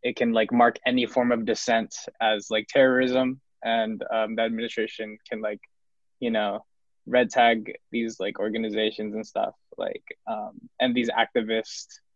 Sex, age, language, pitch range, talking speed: male, 20-39, English, 110-130 Hz, 155 wpm